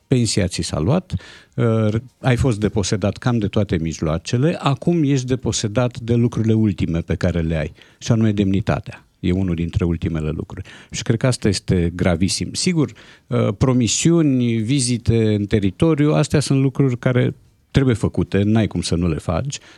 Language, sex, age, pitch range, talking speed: Romanian, male, 50-69, 100-135 Hz, 160 wpm